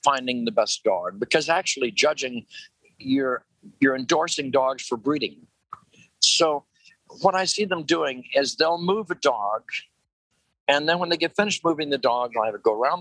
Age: 60-79